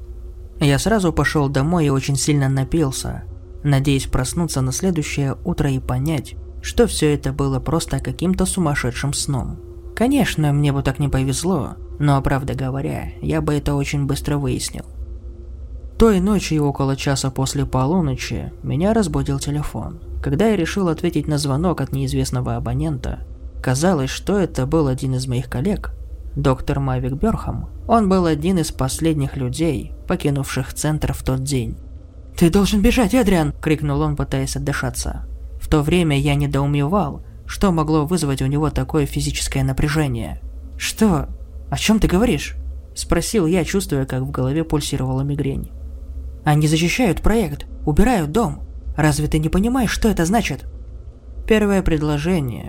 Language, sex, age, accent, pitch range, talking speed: Russian, male, 20-39, native, 125-160 Hz, 145 wpm